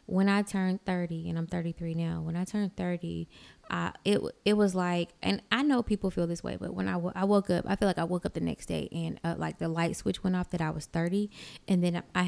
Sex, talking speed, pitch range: female, 275 wpm, 165-185 Hz